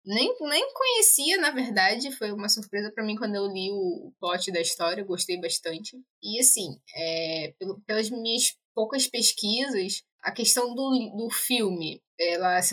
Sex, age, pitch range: female, 10-29, 200-315 Hz